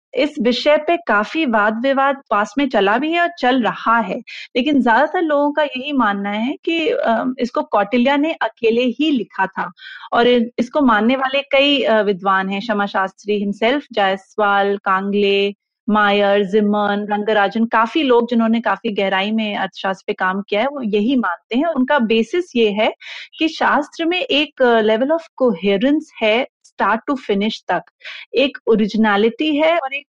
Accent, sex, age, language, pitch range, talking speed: native, female, 30-49, Hindi, 205-275 Hz, 150 wpm